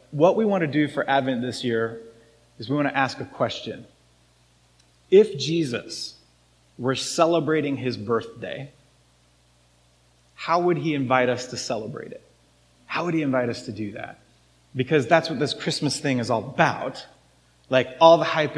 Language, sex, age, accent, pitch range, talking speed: English, male, 30-49, American, 115-150 Hz, 165 wpm